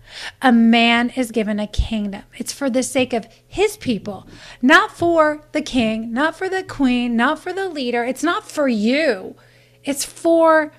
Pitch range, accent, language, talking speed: 225-270 Hz, American, English, 170 wpm